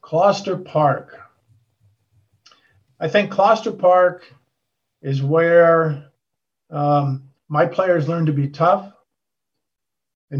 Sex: male